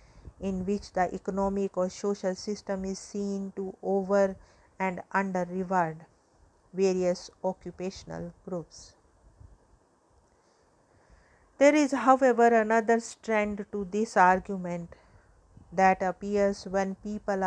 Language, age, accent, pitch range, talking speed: English, 50-69, Indian, 180-200 Hz, 100 wpm